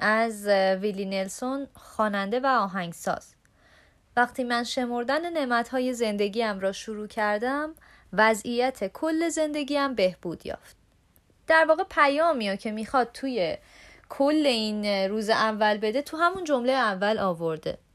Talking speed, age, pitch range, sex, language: 125 wpm, 30-49, 205-275 Hz, female, Persian